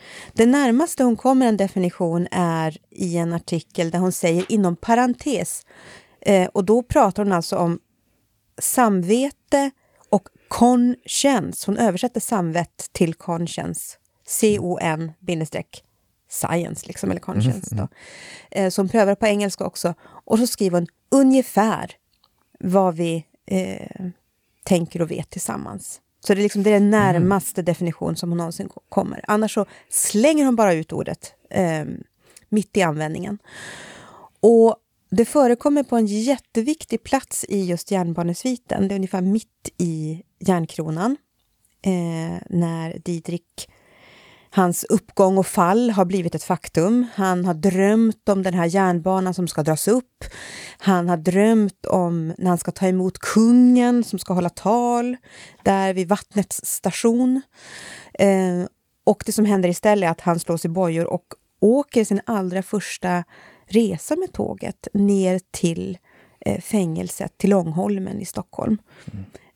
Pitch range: 175-220 Hz